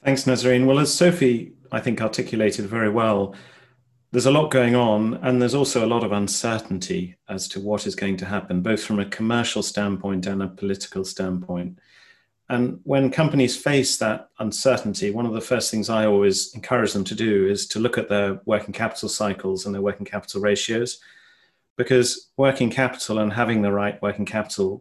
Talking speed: 185 wpm